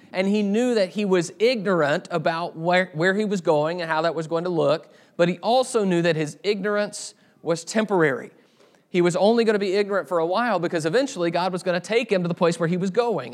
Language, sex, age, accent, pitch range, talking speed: English, male, 40-59, American, 155-200 Hz, 245 wpm